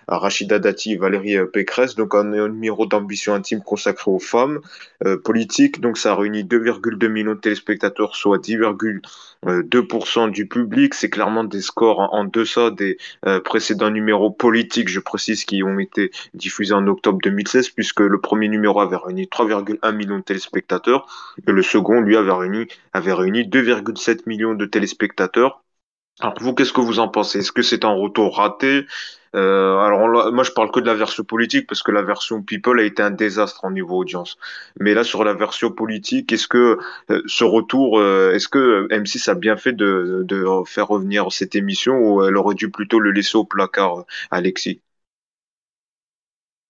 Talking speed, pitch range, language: 180 wpm, 100-115 Hz, French